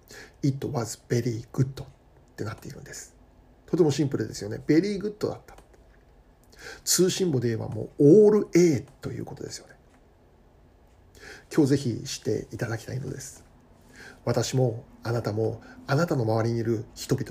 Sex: male